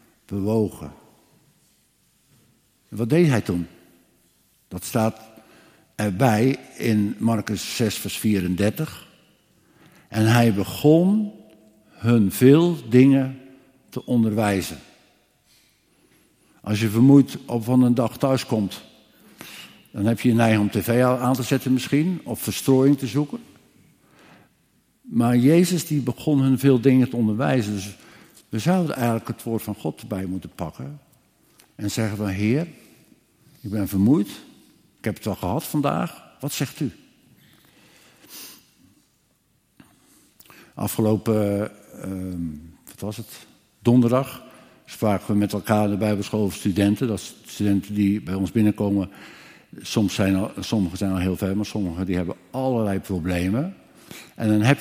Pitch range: 100-130 Hz